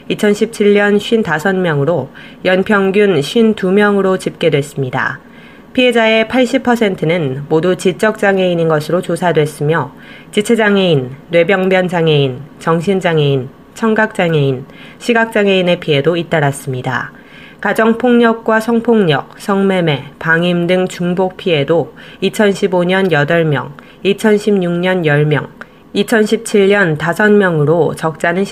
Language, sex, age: Korean, female, 20-39